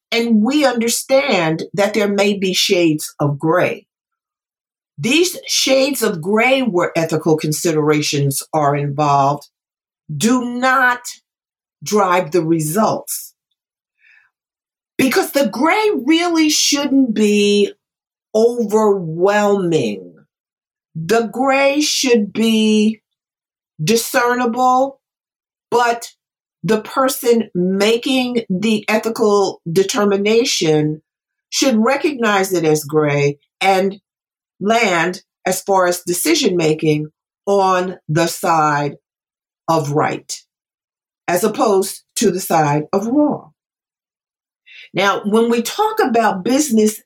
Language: English